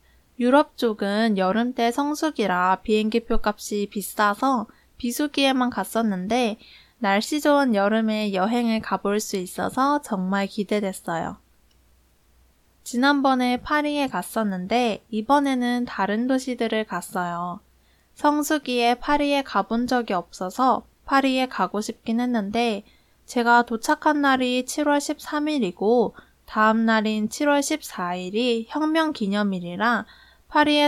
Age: 20-39